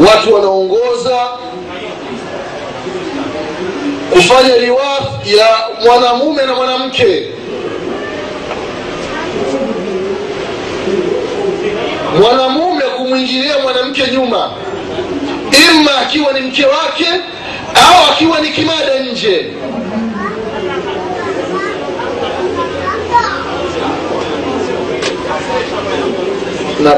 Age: 30-49